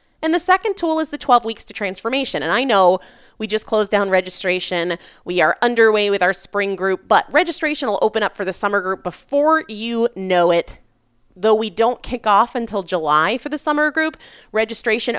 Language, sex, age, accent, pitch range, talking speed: English, female, 30-49, American, 170-250 Hz, 200 wpm